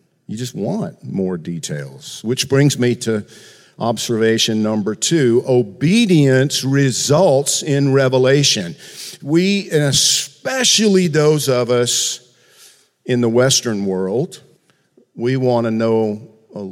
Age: 50-69